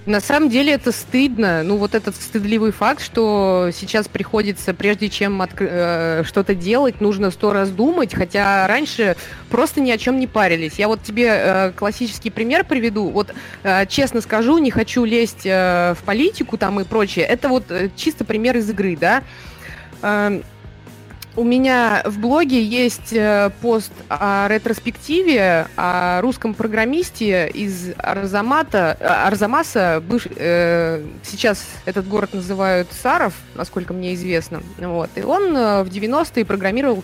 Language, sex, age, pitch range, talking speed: Russian, female, 20-39, 180-235 Hz, 135 wpm